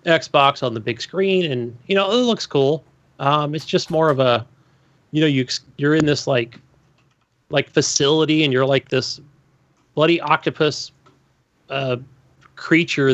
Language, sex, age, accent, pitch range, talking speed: English, male, 30-49, American, 130-155 Hz, 155 wpm